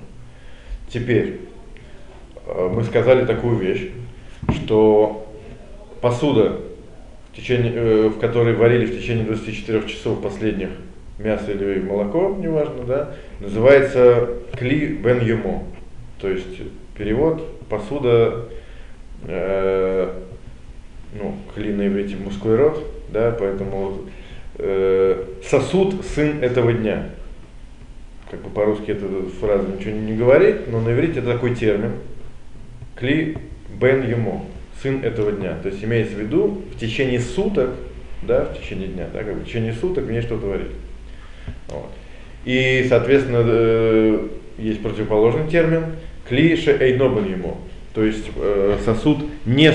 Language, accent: Russian, native